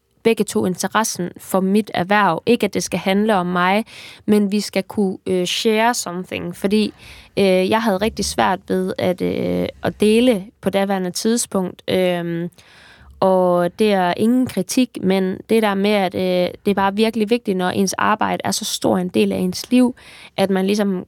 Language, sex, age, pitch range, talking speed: Danish, female, 20-39, 185-225 Hz, 185 wpm